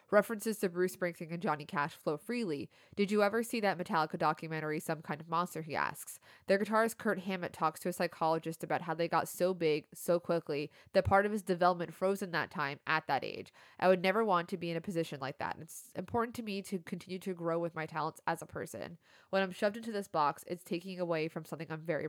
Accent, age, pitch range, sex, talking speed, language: American, 20-39, 160-190 Hz, female, 240 wpm, English